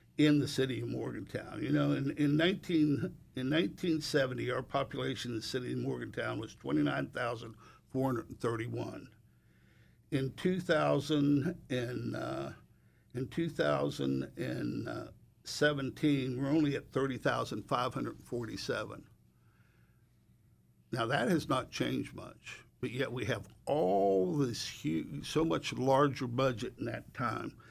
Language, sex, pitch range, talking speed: English, male, 120-155 Hz, 145 wpm